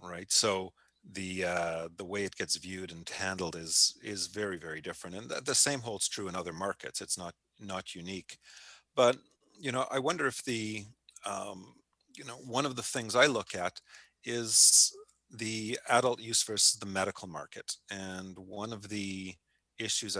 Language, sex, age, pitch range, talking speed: English, male, 40-59, 90-105 Hz, 175 wpm